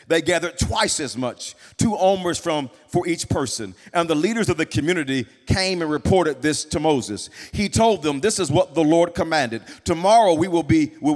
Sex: male